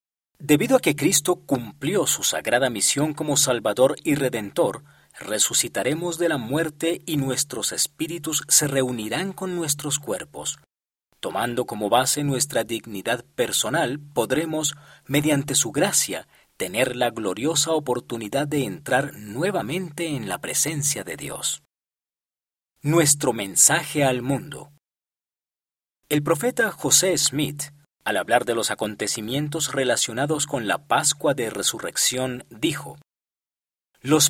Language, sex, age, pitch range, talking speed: Spanish, male, 40-59, 130-160 Hz, 115 wpm